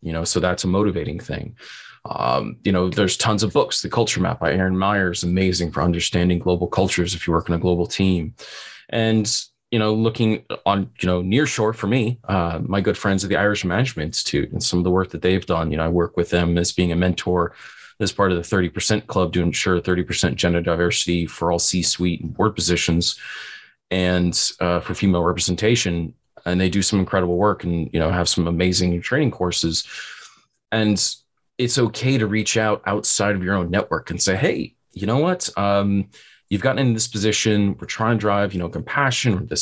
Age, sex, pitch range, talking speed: 30-49, male, 90-110 Hz, 210 wpm